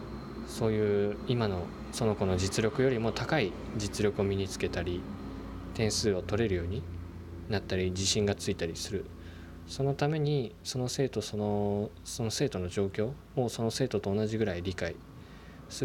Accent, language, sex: native, Japanese, male